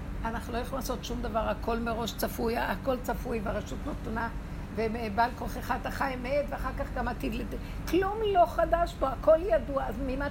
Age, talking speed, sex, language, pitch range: 60-79, 175 wpm, female, Hebrew, 255-335 Hz